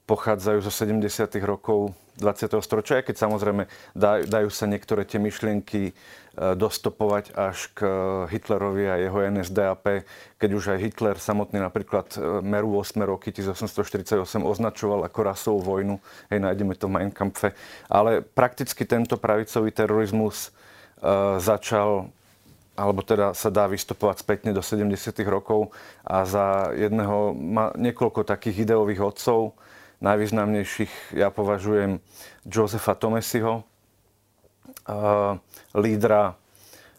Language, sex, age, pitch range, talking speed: Slovak, male, 40-59, 100-110 Hz, 110 wpm